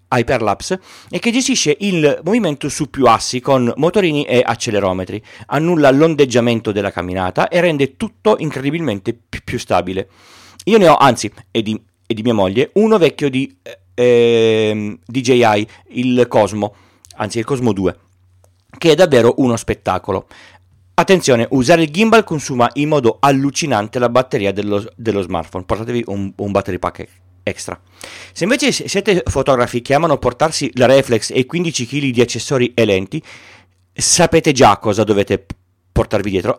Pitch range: 105-145 Hz